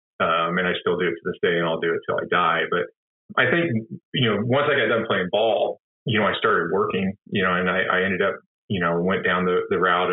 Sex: male